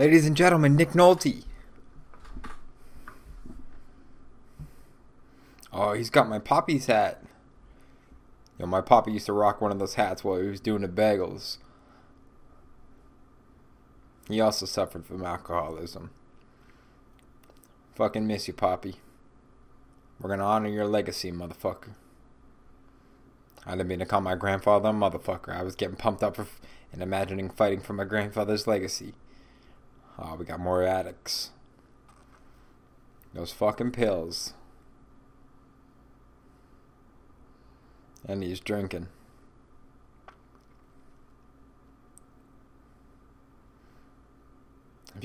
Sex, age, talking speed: male, 20-39, 105 wpm